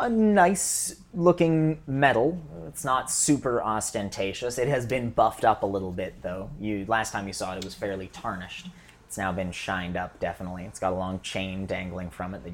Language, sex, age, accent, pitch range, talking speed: English, male, 30-49, American, 95-125 Hz, 195 wpm